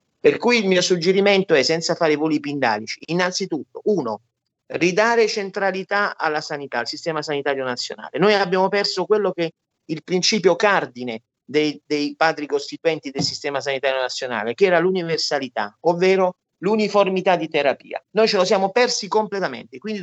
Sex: male